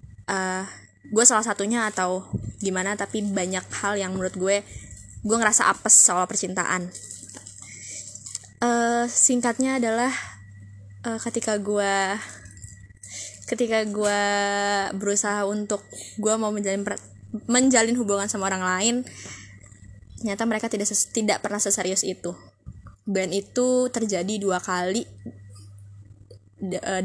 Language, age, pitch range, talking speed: Indonesian, 20-39, 135-220 Hz, 115 wpm